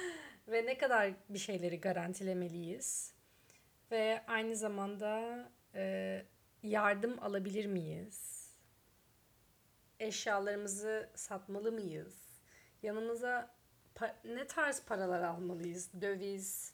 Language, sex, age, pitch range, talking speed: Turkish, female, 30-49, 190-245 Hz, 75 wpm